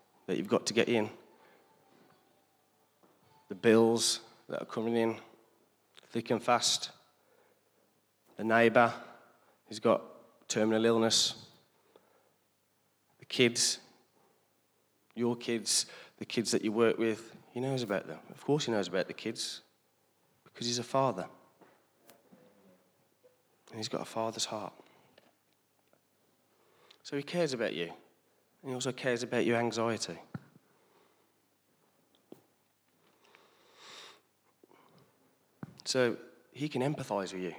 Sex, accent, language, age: male, British, English, 20-39